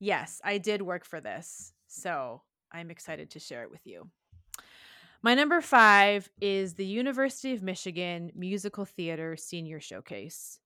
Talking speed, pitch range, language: 145 wpm, 165-205 Hz, English